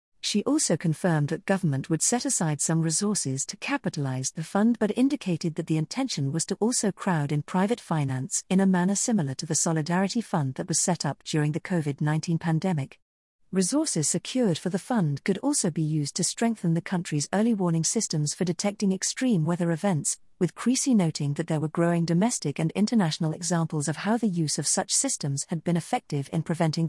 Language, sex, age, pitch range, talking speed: English, female, 50-69, 160-205 Hz, 190 wpm